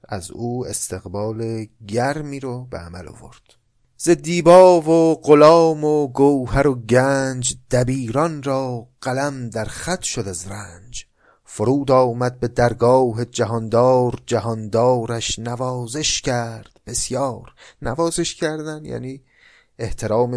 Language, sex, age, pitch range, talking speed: Persian, male, 30-49, 100-135 Hz, 105 wpm